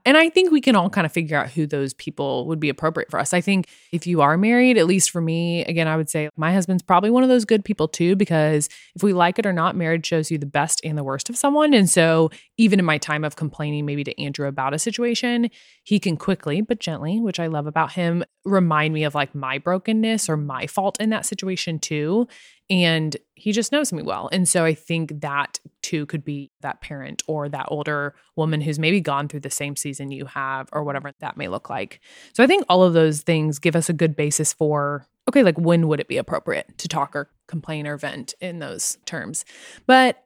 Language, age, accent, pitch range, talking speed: English, 20-39, American, 150-200 Hz, 240 wpm